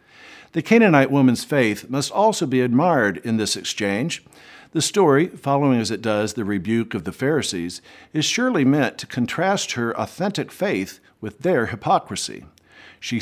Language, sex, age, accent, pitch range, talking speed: English, male, 50-69, American, 105-155 Hz, 155 wpm